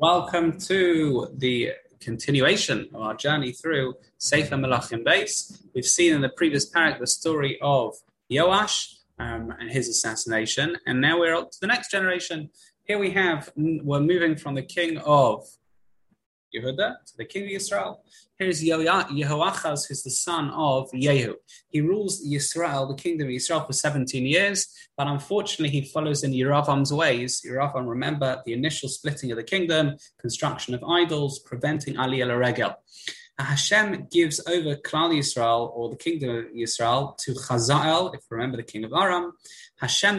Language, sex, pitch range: English, male, 125-160 Hz